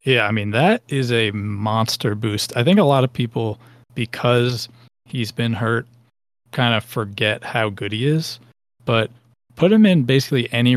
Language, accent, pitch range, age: English, American, 110-125 Hz, 20-39